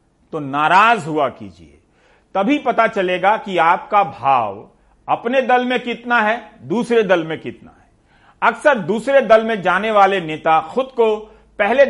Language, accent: Hindi, native